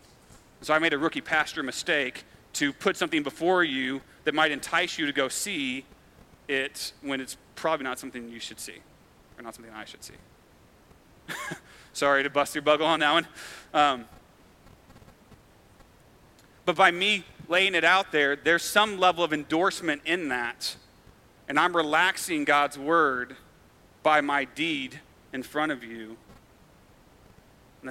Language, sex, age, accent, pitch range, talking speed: English, male, 30-49, American, 135-185 Hz, 150 wpm